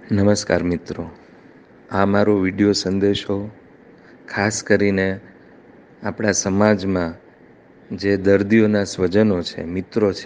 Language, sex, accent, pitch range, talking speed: Gujarati, male, native, 100-115 Hz, 75 wpm